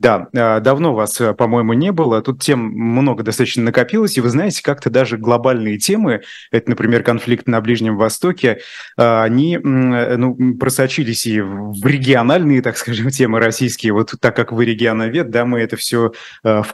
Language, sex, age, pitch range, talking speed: Russian, male, 20-39, 115-135 Hz, 160 wpm